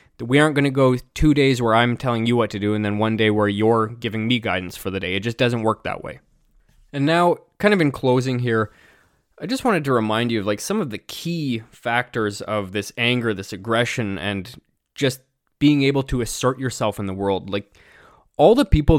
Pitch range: 110-140 Hz